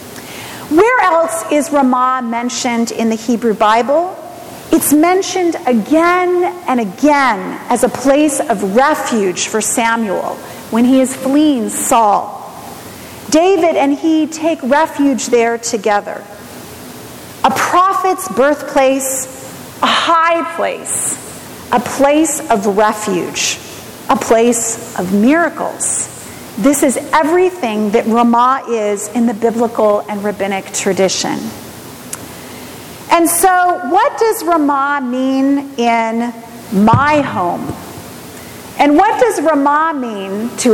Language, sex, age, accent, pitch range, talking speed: English, female, 40-59, American, 230-310 Hz, 110 wpm